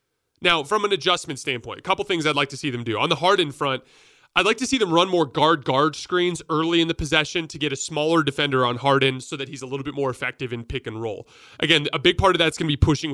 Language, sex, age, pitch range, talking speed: English, male, 30-49, 135-170 Hz, 275 wpm